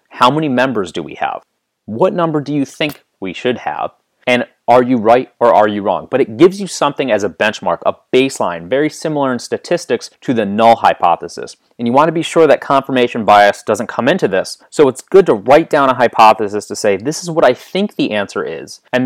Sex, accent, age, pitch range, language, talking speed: male, American, 30-49, 110-155 Hz, English, 225 wpm